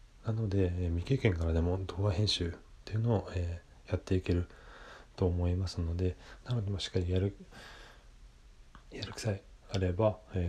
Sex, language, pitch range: male, Japanese, 85-105 Hz